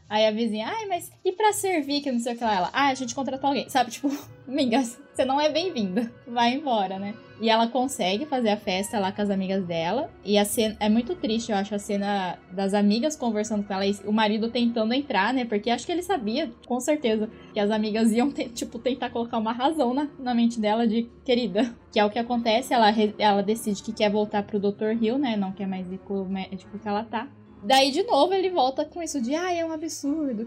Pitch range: 205-255 Hz